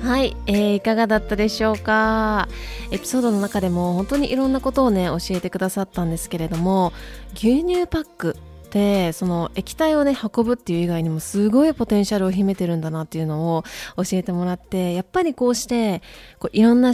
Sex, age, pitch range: female, 20-39, 180-235 Hz